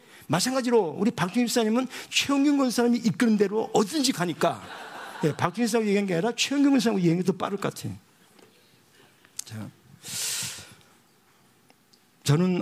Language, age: Korean, 50-69